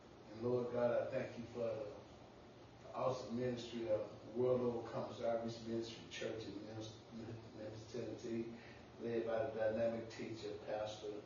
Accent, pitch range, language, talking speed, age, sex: American, 115-135 Hz, English, 130 wpm, 30-49, female